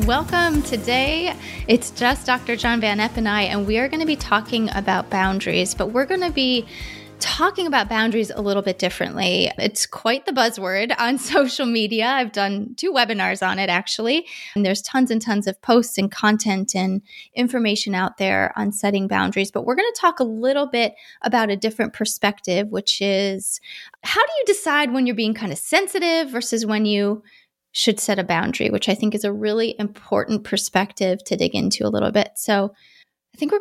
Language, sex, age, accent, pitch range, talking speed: English, female, 20-39, American, 200-255 Hz, 195 wpm